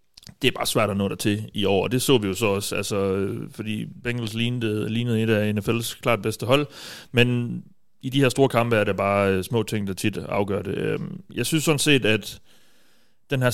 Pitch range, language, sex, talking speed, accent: 100-120 Hz, Danish, male, 220 wpm, native